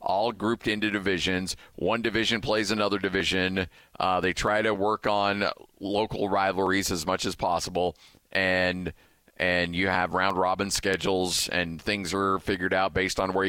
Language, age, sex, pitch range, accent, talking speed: English, 40-59, male, 95-105 Hz, American, 155 wpm